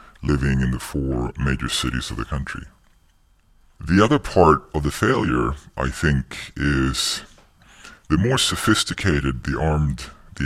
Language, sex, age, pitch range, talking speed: English, female, 40-59, 70-80 Hz, 140 wpm